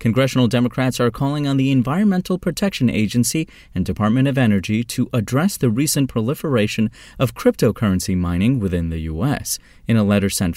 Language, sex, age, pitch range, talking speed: English, male, 30-49, 95-130 Hz, 160 wpm